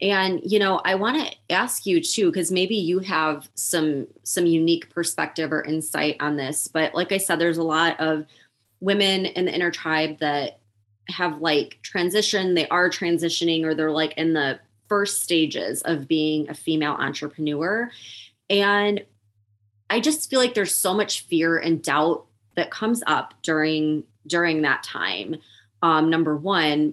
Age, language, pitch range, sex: 20-39, English, 155-200 Hz, female